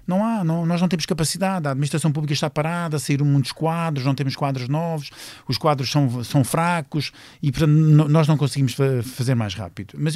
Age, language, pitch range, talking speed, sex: 50-69, Portuguese, 115-170 Hz, 200 wpm, male